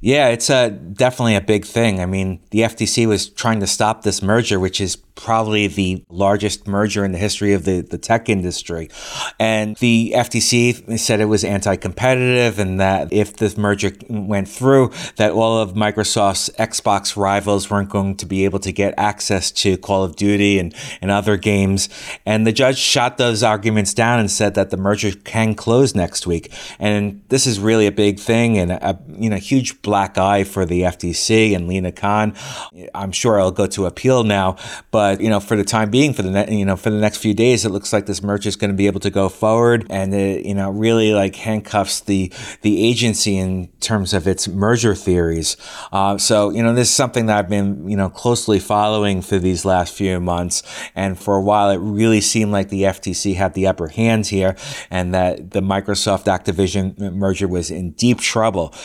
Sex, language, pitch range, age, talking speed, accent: male, English, 95-110 Hz, 30-49, 205 wpm, American